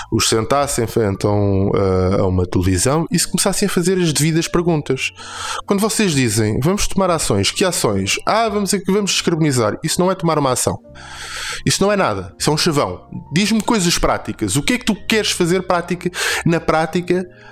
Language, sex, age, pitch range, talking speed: Portuguese, male, 20-39, 130-190 Hz, 180 wpm